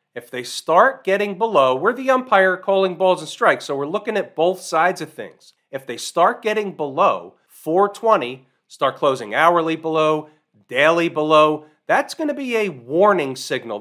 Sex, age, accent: male, 40-59, American